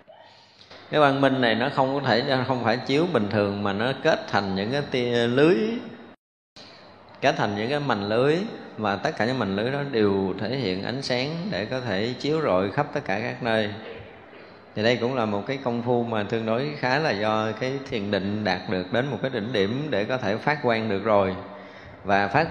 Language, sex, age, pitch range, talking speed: Vietnamese, male, 20-39, 100-130 Hz, 220 wpm